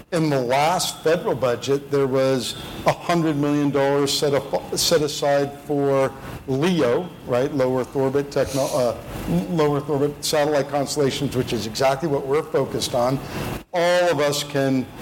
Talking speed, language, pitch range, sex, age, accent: 125 wpm, English, 140-160 Hz, male, 60-79, American